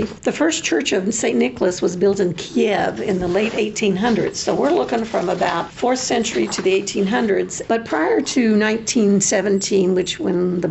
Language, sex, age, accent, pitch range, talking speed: English, female, 50-69, American, 185-215 Hz, 175 wpm